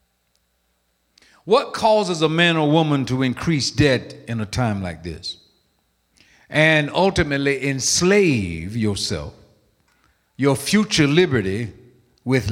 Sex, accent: male, American